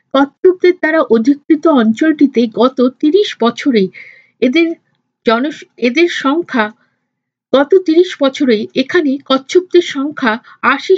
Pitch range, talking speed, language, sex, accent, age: 235-350 Hz, 60 wpm, Bengali, female, native, 50-69